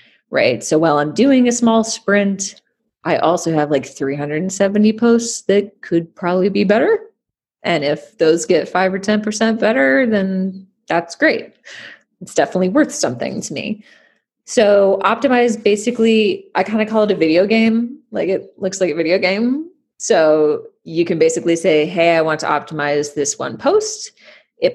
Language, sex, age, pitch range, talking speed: English, female, 20-39, 170-230 Hz, 165 wpm